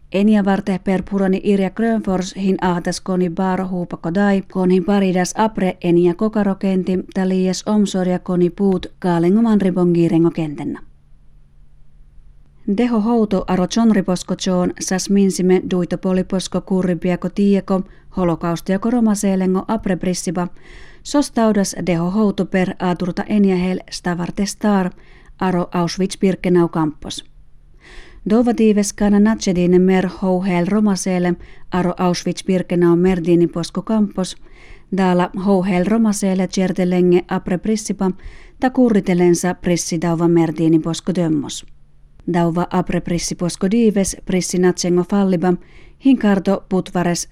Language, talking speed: Finnish, 100 wpm